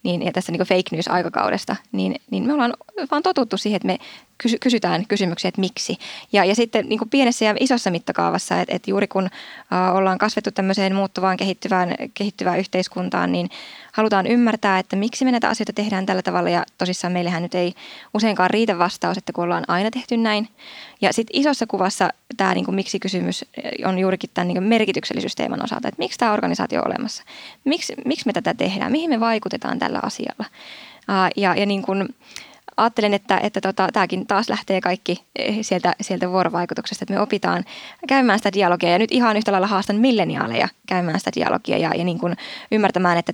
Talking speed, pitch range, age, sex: 175 wpm, 185-220 Hz, 20-39, female